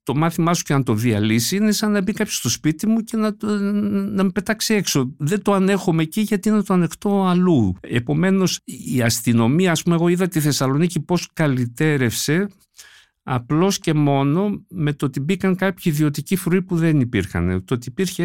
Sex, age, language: male, 60-79, Greek